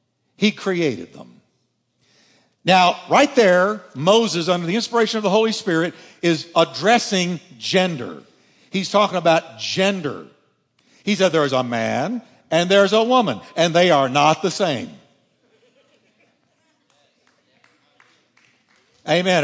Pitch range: 175-230 Hz